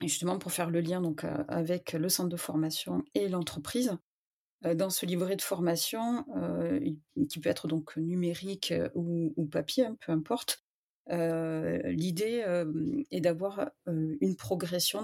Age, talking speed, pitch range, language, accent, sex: 30-49, 155 wpm, 165-190 Hz, French, French, female